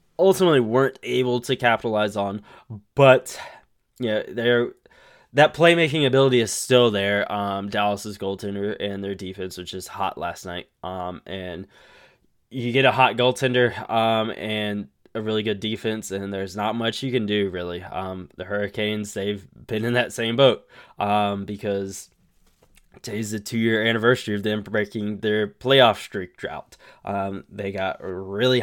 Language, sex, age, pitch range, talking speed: English, male, 10-29, 100-120 Hz, 155 wpm